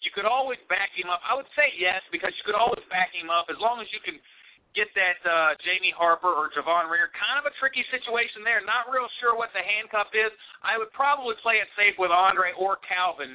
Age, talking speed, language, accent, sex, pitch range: 40-59, 240 wpm, English, American, male, 160-210 Hz